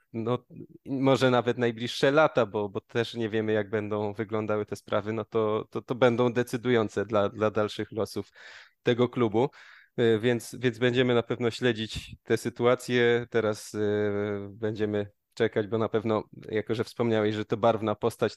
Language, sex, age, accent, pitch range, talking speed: Polish, male, 20-39, native, 110-125 Hz, 160 wpm